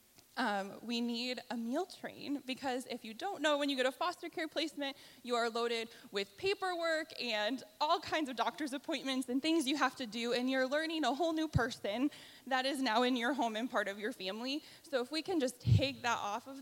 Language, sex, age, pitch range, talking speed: English, female, 10-29, 225-295 Hz, 225 wpm